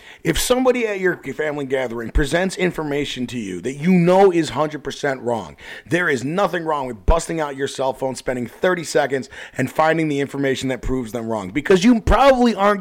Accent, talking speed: American, 190 wpm